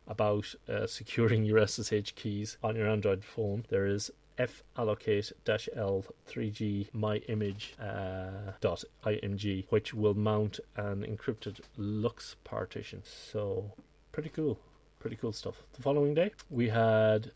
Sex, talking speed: male, 140 wpm